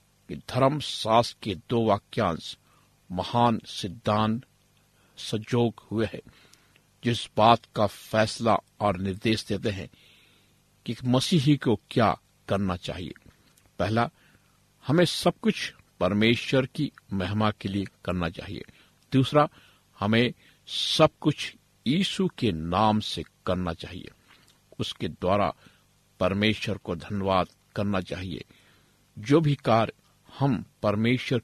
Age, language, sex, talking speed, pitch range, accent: 60-79, Hindi, male, 110 wpm, 100-135 Hz, native